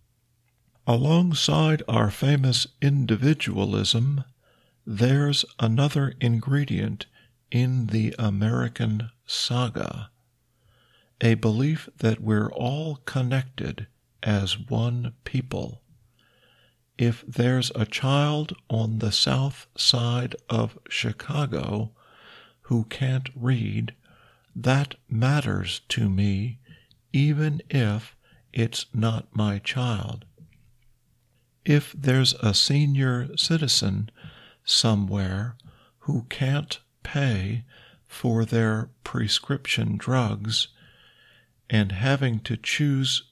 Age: 50-69